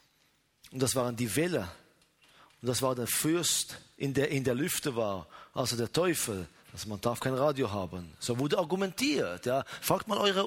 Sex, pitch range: male, 120-175 Hz